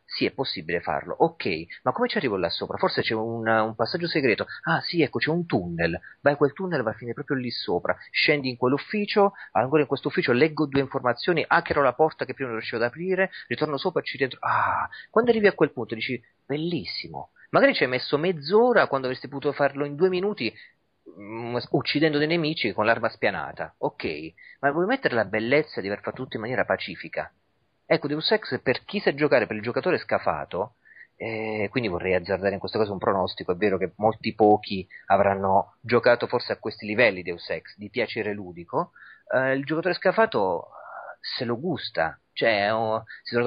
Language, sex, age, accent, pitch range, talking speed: Italian, male, 30-49, native, 110-160 Hz, 200 wpm